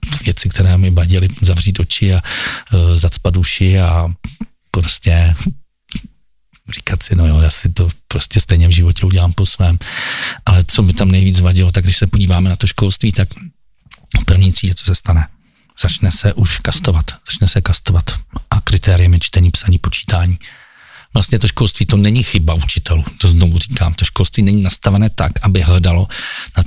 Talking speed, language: 170 wpm, Czech